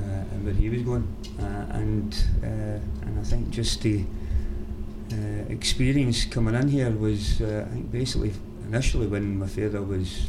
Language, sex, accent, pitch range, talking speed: English, male, British, 95-115 Hz, 170 wpm